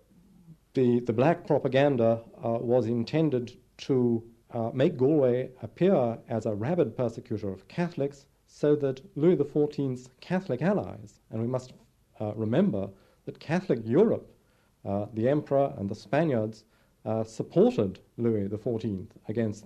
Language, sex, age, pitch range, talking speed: English, male, 50-69, 110-135 Hz, 130 wpm